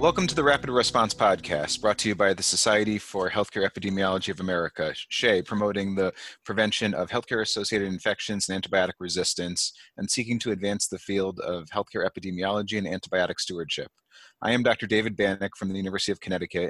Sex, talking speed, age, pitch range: male, 175 wpm, 30-49, 95-110 Hz